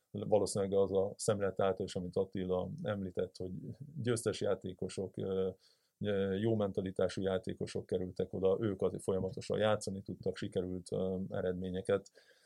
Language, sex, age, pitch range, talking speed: Hungarian, male, 30-49, 95-110 Hz, 100 wpm